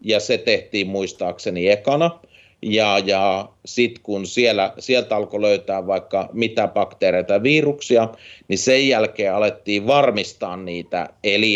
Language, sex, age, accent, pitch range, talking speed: Finnish, male, 30-49, native, 95-120 Hz, 130 wpm